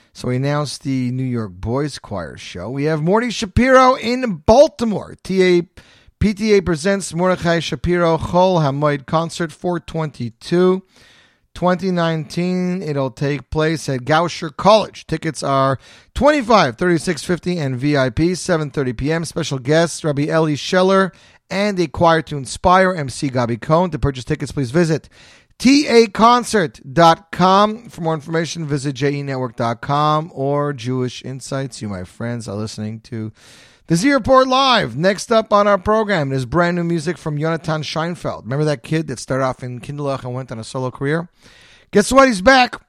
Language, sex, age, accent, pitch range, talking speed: English, male, 40-59, American, 140-185 Hz, 145 wpm